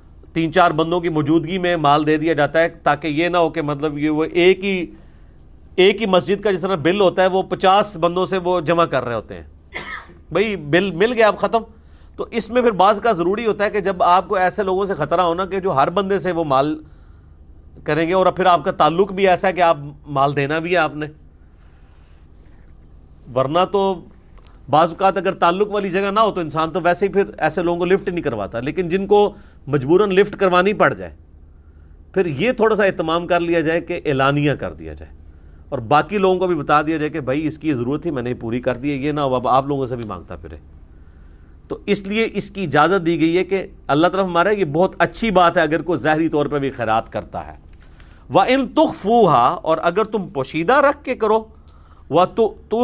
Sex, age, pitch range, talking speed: male, 40-59, 130-190 Hz, 225 wpm